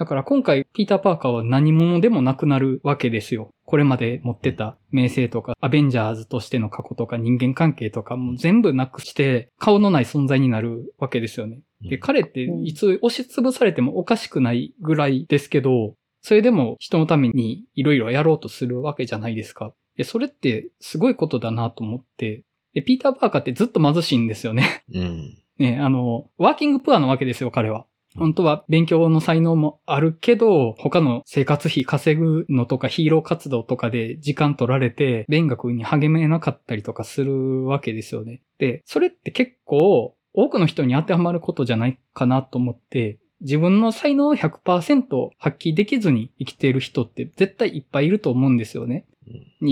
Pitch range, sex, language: 125-160 Hz, male, Japanese